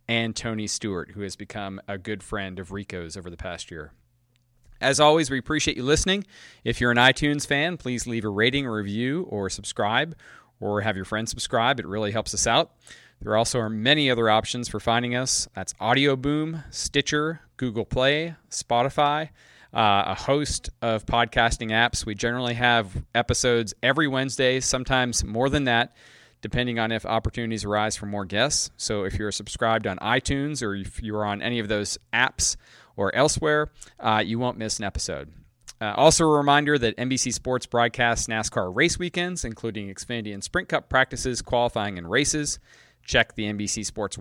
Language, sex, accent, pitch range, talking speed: English, male, American, 105-130 Hz, 175 wpm